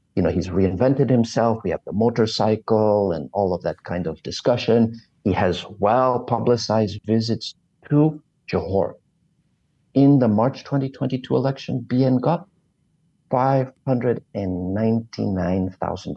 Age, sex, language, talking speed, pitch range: 50-69, male, English, 110 wpm, 115-145 Hz